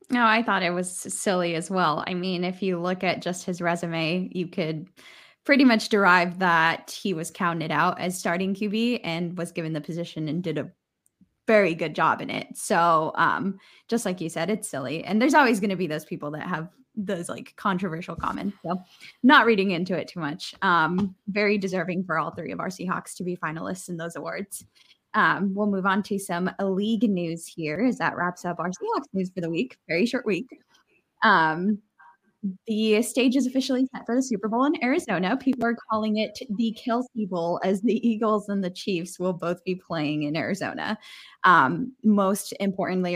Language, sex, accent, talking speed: English, female, American, 200 wpm